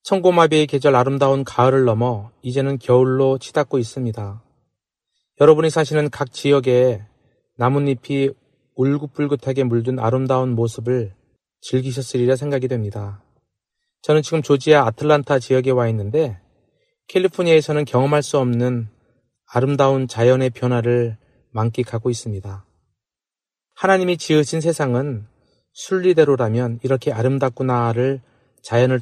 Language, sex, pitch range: Korean, male, 120-145 Hz